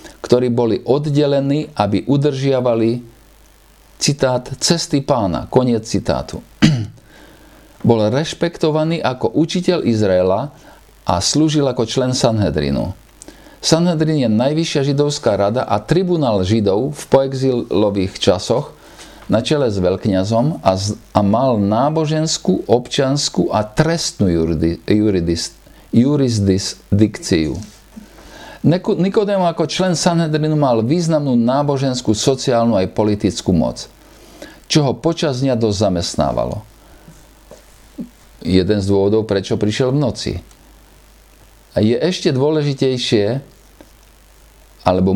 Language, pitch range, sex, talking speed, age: Slovak, 105-150 Hz, male, 95 wpm, 50-69